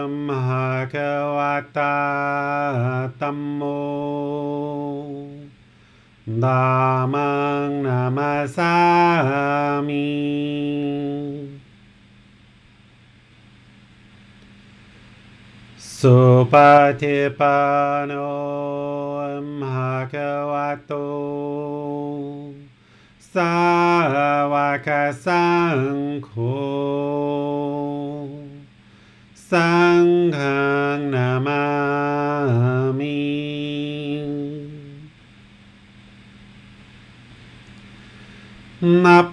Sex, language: male, English